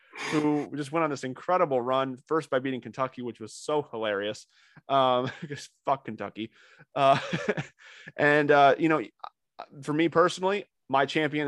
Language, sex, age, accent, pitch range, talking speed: English, male, 20-39, American, 125-160 Hz, 150 wpm